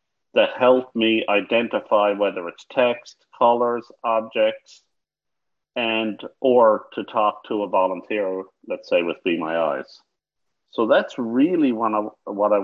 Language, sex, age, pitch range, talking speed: English, male, 50-69, 105-130 Hz, 140 wpm